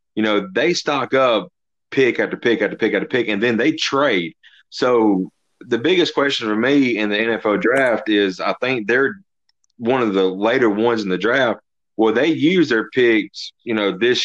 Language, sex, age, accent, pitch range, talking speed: English, male, 30-49, American, 95-110 Hz, 200 wpm